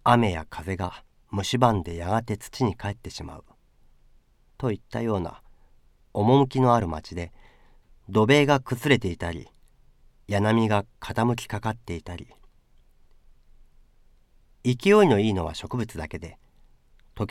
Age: 40-59